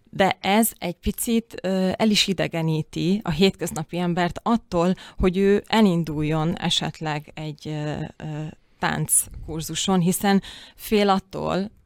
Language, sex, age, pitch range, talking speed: Hungarian, female, 30-49, 155-190 Hz, 100 wpm